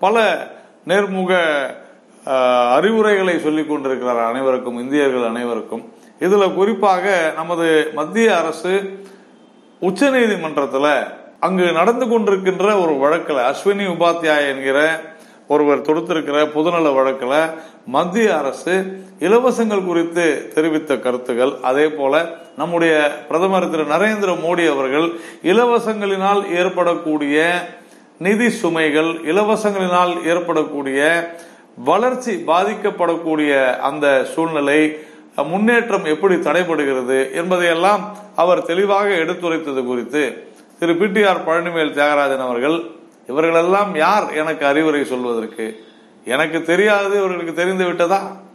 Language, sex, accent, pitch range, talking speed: Tamil, male, native, 150-195 Hz, 90 wpm